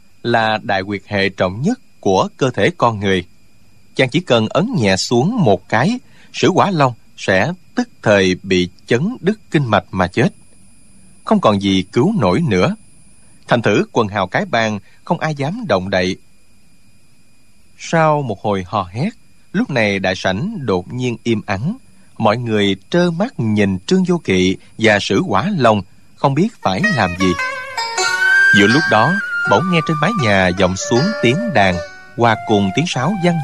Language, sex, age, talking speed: Vietnamese, male, 20-39, 170 wpm